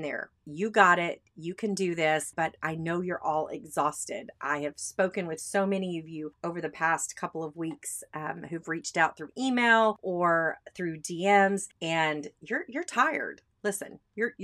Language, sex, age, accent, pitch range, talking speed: English, female, 30-49, American, 155-195 Hz, 180 wpm